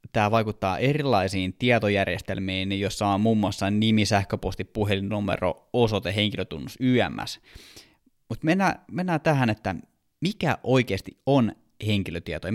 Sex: male